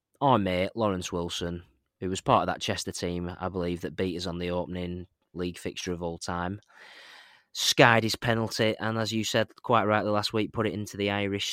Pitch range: 95-110 Hz